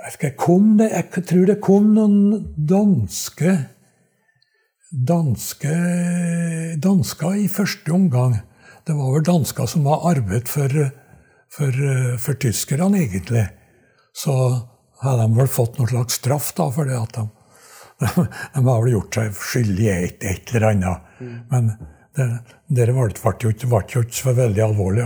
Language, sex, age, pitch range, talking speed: English, male, 60-79, 120-150 Hz, 135 wpm